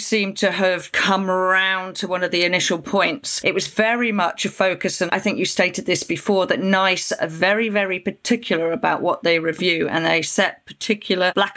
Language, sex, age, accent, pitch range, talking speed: English, female, 40-59, British, 175-205 Hz, 200 wpm